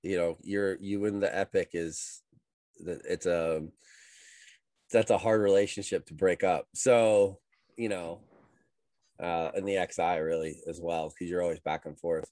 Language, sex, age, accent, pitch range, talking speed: English, male, 20-39, American, 100-135 Hz, 170 wpm